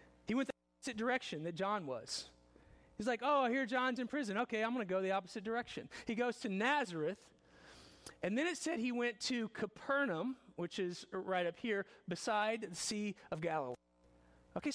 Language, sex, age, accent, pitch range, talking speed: English, male, 40-59, American, 180-245 Hz, 185 wpm